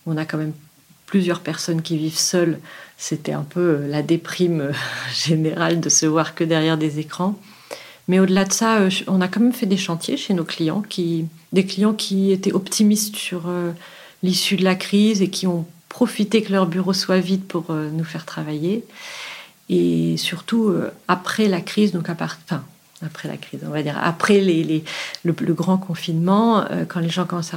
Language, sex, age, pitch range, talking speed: French, female, 40-59, 160-190 Hz, 185 wpm